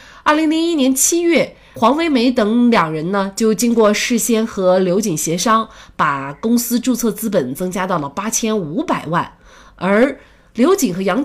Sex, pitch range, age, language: female, 180-245 Hz, 20-39, Chinese